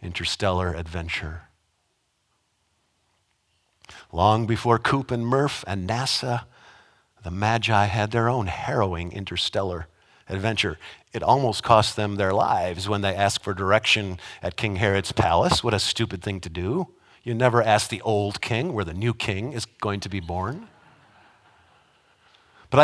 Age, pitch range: 50-69, 110-180 Hz